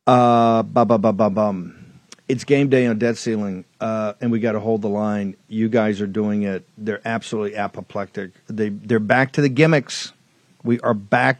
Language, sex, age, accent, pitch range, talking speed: English, male, 50-69, American, 110-145 Hz, 200 wpm